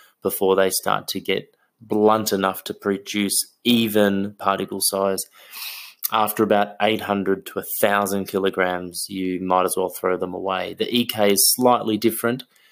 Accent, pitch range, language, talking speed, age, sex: Australian, 95-105 Hz, English, 140 wpm, 20-39, male